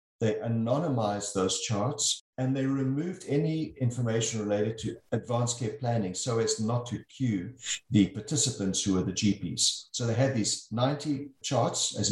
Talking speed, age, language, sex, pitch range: 160 wpm, 50-69, English, male, 105-135 Hz